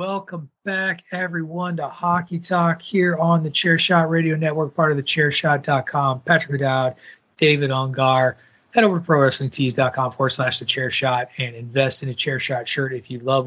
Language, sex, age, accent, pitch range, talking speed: English, male, 30-49, American, 135-180 Hz, 175 wpm